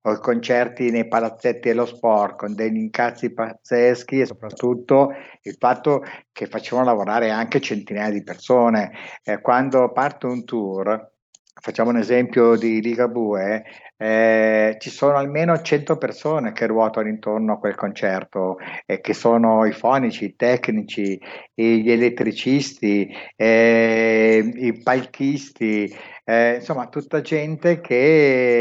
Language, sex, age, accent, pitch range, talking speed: Italian, male, 60-79, native, 110-130 Hz, 130 wpm